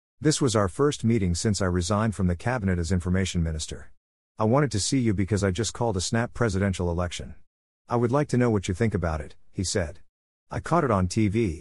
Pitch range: 90-115 Hz